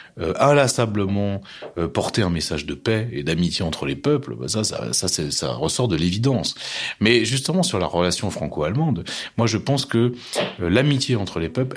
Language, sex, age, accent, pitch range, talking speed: French, male, 30-49, French, 85-125 Hz, 170 wpm